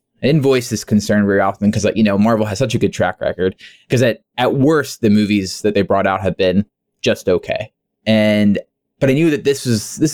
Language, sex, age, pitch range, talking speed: English, male, 20-39, 100-125 Hz, 230 wpm